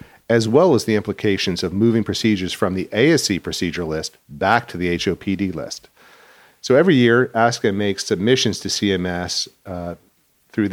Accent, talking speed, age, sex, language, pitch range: American, 155 wpm, 40-59, male, English, 90-115 Hz